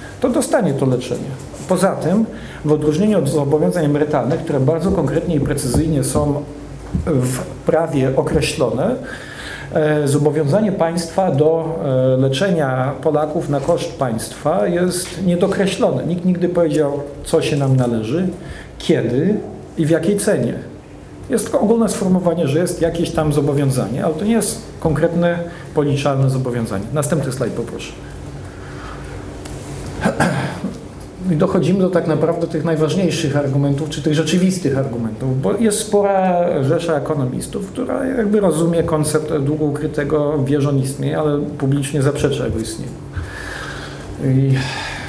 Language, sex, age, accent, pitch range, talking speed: Polish, male, 40-59, native, 140-170 Hz, 125 wpm